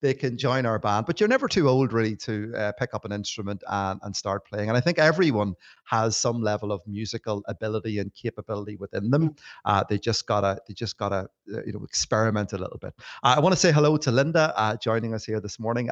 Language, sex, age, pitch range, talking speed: English, male, 30-49, 110-130 Hz, 240 wpm